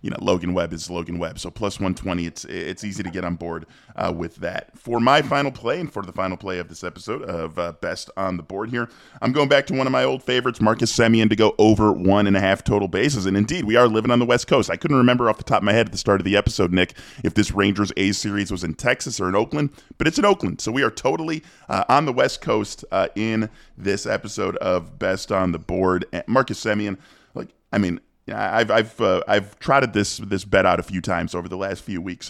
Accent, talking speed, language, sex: American, 260 wpm, English, male